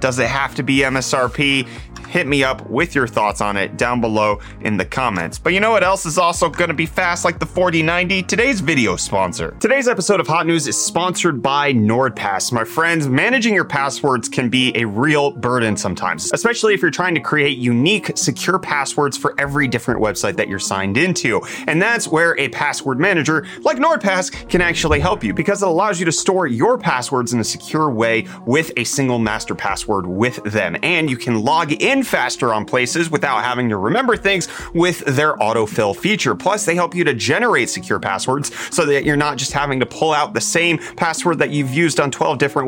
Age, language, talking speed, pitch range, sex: 30-49, English, 205 wpm, 120-175 Hz, male